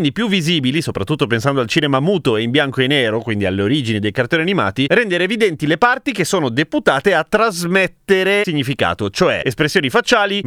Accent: native